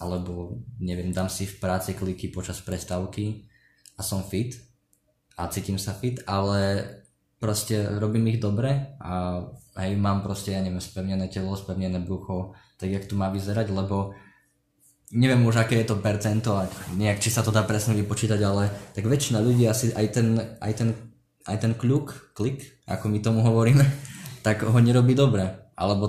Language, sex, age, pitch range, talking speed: Slovak, male, 20-39, 95-115 Hz, 165 wpm